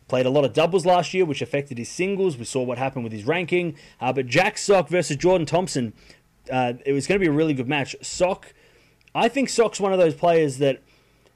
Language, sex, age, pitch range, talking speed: English, male, 20-39, 135-180 Hz, 240 wpm